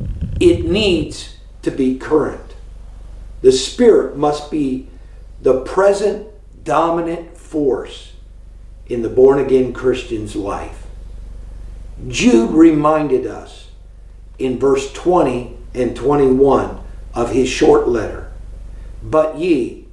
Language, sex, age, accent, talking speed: English, male, 50-69, American, 100 wpm